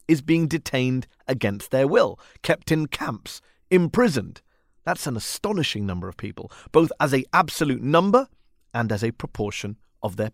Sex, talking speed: male, 155 wpm